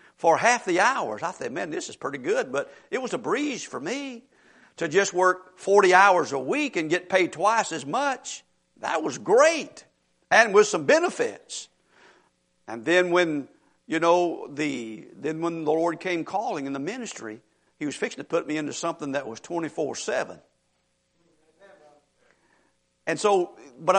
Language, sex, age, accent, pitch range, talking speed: English, male, 50-69, American, 155-200 Hz, 175 wpm